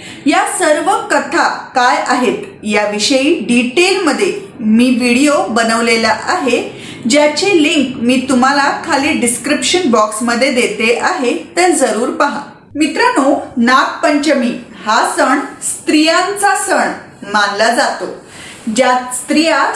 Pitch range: 245-310 Hz